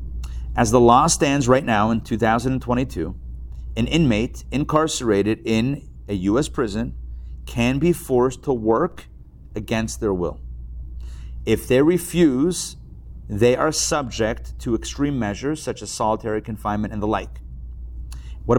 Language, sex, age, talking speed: English, male, 40-59, 130 wpm